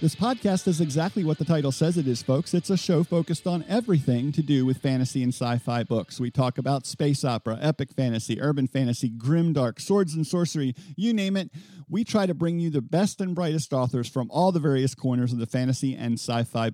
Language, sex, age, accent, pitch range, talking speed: English, male, 50-69, American, 135-180 Hz, 215 wpm